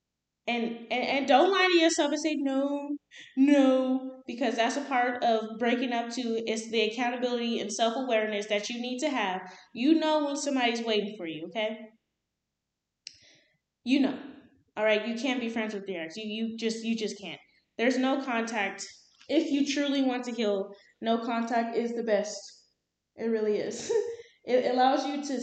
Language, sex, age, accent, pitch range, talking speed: English, female, 20-39, American, 210-270 Hz, 175 wpm